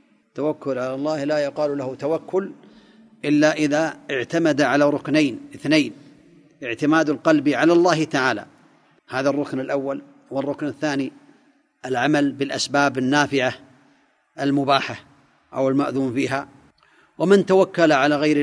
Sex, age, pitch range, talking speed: male, 40-59, 140-170 Hz, 110 wpm